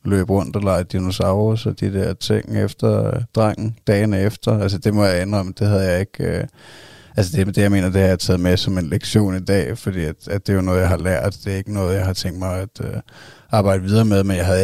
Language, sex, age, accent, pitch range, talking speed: Danish, male, 30-49, native, 95-105 Hz, 265 wpm